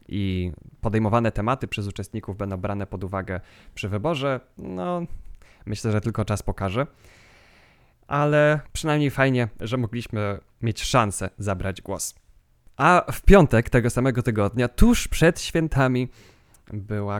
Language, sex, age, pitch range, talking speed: Polish, male, 20-39, 100-135 Hz, 125 wpm